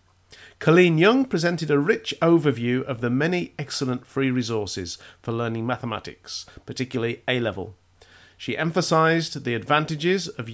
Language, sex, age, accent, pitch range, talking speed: English, male, 40-59, British, 110-145 Hz, 125 wpm